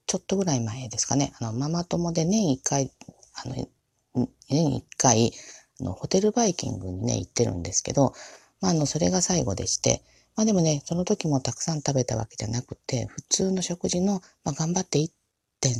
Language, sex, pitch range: Japanese, female, 115-175 Hz